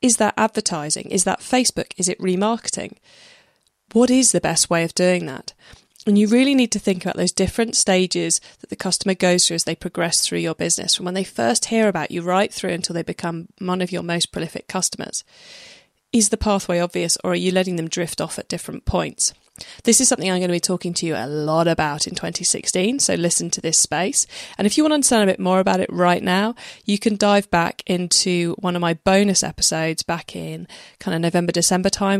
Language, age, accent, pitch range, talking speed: English, 20-39, British, 170-205 Hz, 225 wpm